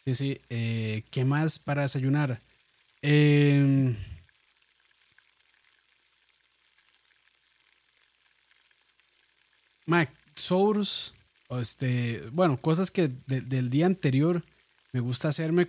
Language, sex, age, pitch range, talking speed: Spanish, male, 20-39, 120-155 Hz, 80 wpm